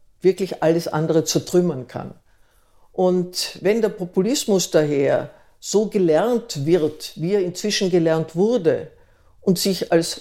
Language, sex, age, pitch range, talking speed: German, female, 60-79, 170-210 Hz, 125 wpm